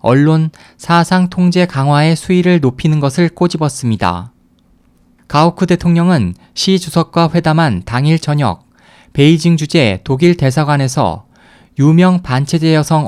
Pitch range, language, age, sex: 135-170 Hz, Korean, 20-39, male